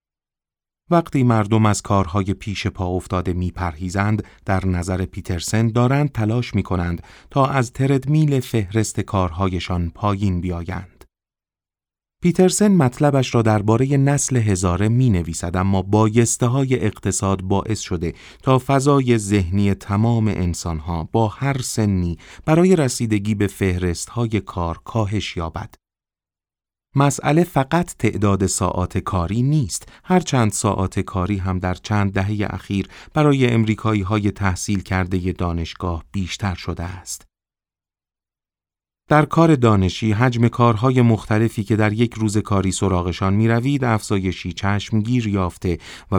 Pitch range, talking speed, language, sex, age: 90-120 Hz, 120 wpm, Persian, male, 30-49